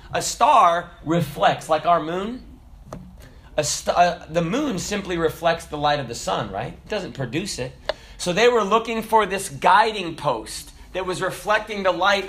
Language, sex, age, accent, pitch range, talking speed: English, male, 30-49, American, 160-250 Hz, 165 wpm